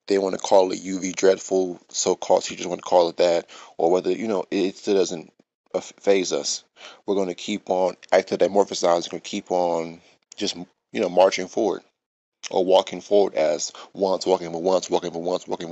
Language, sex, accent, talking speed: English, male, American, 200 wpm